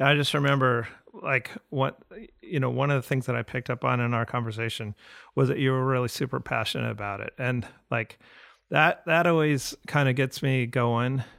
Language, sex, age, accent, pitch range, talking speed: English, male, 40-59, American, 120-135 Hz, 200 wpm